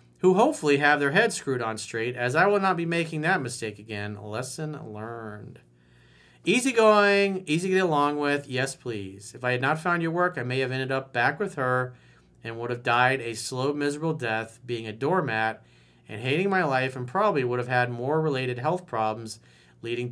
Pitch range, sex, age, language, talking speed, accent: 105-140 Hz, male, 40-59, English, 200 wpm, American